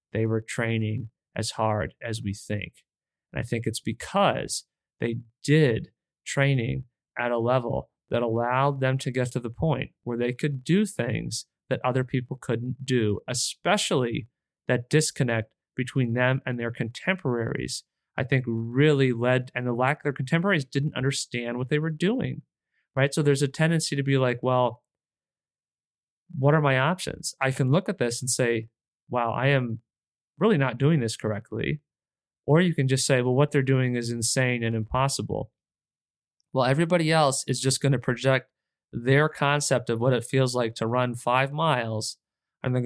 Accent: American